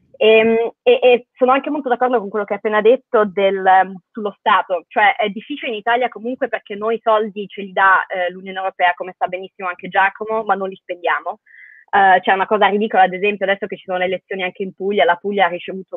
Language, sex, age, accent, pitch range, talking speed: Italian, female, 20-39, native, 190-235 Hz, 235 wpm